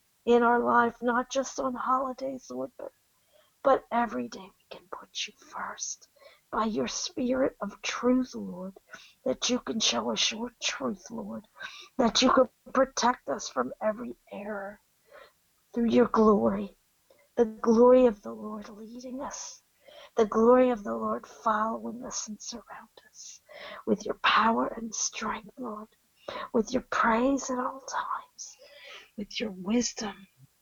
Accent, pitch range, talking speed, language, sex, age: American, 200-250 Hz, 145 wpm, English, female, 50-69